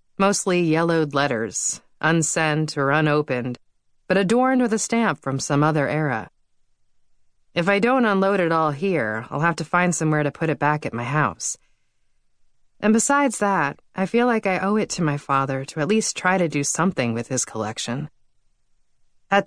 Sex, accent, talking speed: female, American, 175 wpm